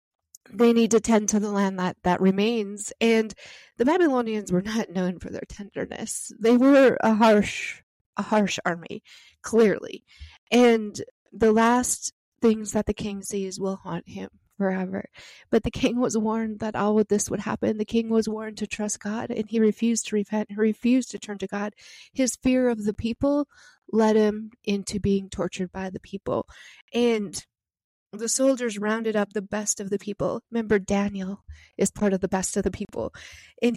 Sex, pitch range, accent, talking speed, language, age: female, 200-230 Hz, American, 180 wpm, English, 30-49